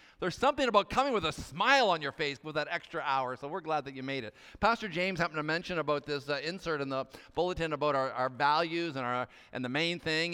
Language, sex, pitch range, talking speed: English, male, 145-185 Hz, 250 wpm